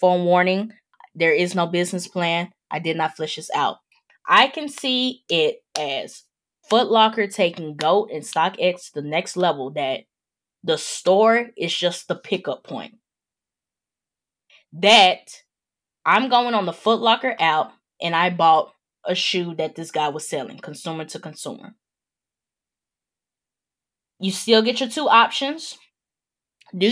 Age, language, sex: 10-29, English, female